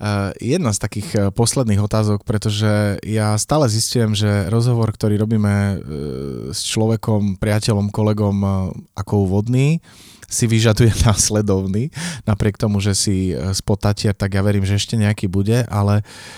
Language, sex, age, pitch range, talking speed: Slovak, male, 30-49, 95-110 Hz, 130 wpm